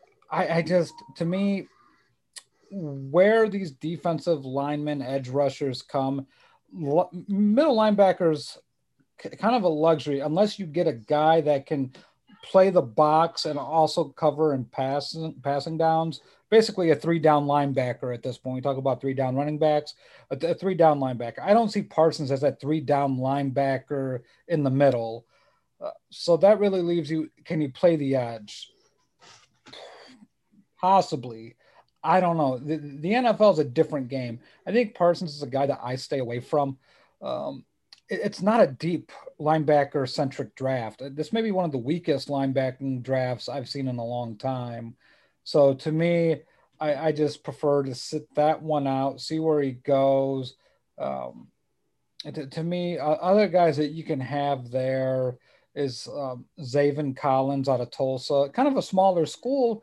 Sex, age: male, 40-59